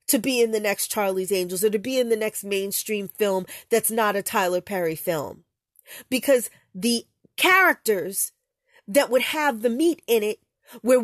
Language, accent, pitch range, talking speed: English, American, 185-245 Hz, 175 wpm